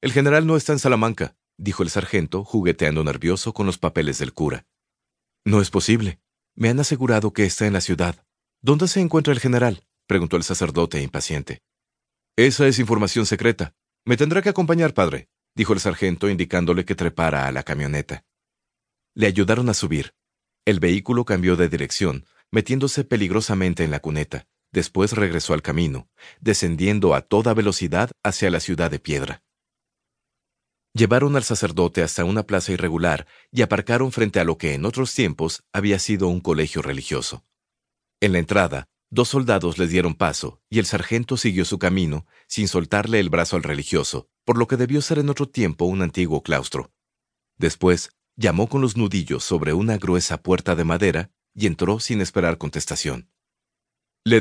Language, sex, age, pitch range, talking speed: Spanish, male, 40-59, 85-115 Hz, 165 wpm